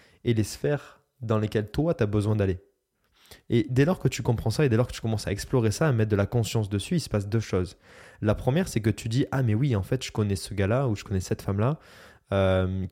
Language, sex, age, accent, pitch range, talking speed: French, male, 20-39, French, 100-125 Hz, 280 wpm